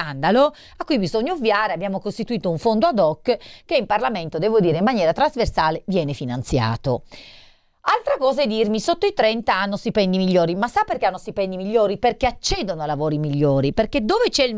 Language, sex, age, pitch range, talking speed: Italian, female, 40-59, 170-230 Hz, 190 wpm